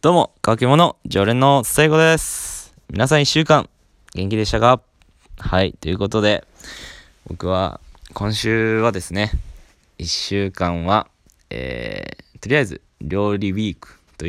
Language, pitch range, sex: Japanese, 80-105 Hz, male